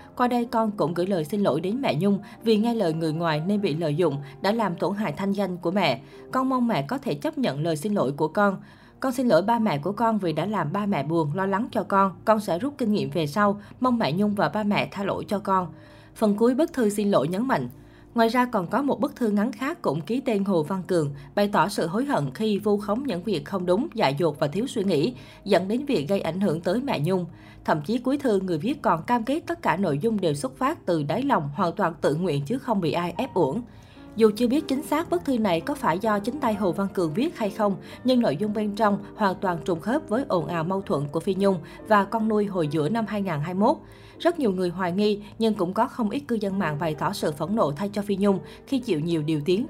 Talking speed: 270 wpm